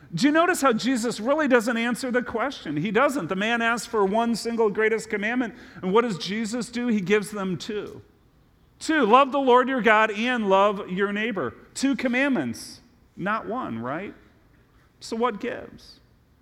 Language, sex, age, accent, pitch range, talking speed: English, male, 40-59, American, 170-230 Hz, 170 wpm